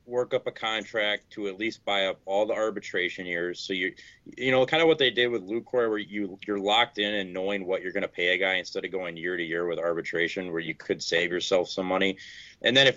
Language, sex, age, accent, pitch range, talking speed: English, male, 30-49, American, 95-120 Hz, 260 wpm